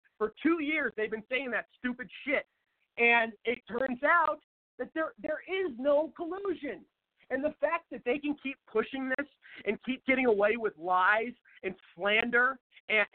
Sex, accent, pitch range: male, American, 220-290 Hz